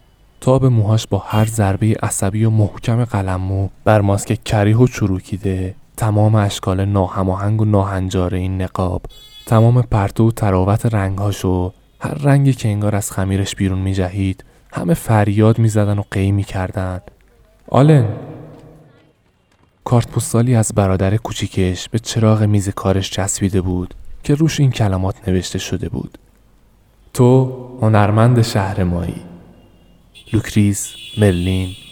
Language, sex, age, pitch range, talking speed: Persian, male, 20-39, 95-115 Hz, 130 wpm